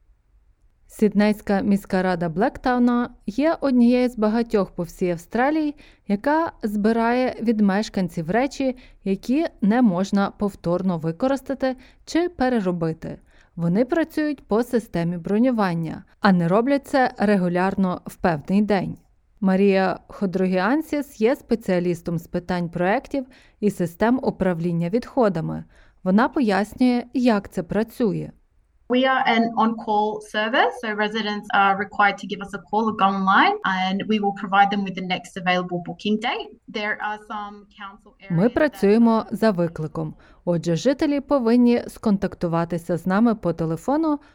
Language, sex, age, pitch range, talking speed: Ukrainian, female, 20-39, 185-245 Hz, 85 wpm